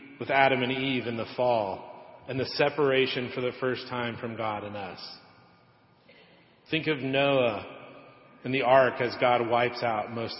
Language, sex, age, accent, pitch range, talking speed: English, male, 40-59, American, 115-135 Hz, 165 wpm